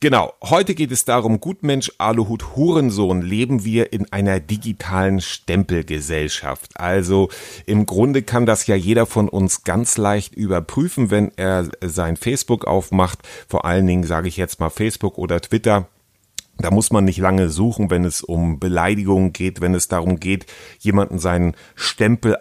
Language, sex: German, male